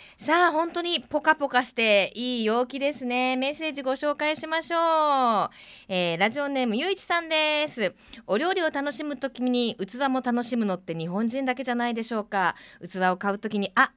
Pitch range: 195-285 Hz